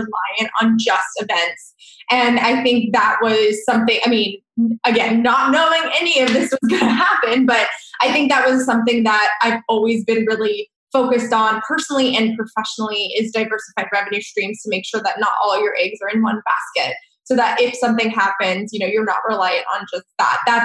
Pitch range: 215-245 Hz